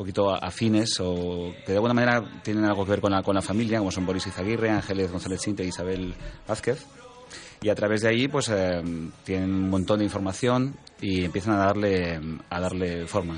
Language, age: Spanish, 30-49